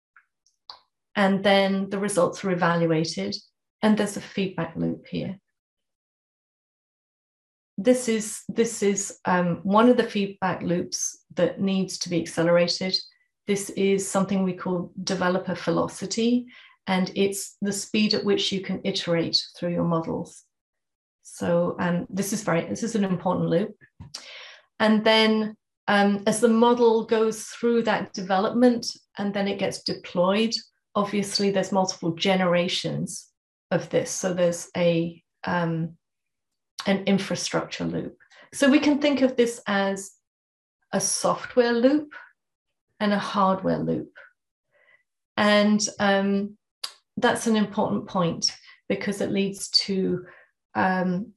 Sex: female